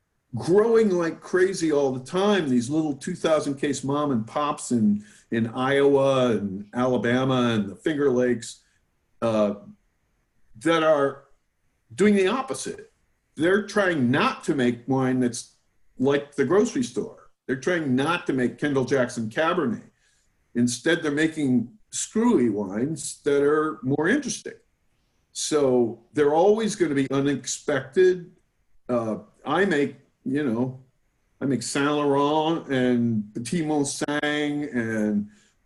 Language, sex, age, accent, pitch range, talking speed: English, male, 50-69, American, 120-160 Hz, 130 wpm